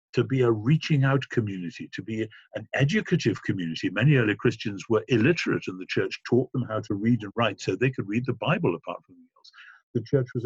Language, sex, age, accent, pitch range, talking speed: English, male, 50-69, British, 105-145 Hz, 220 wpm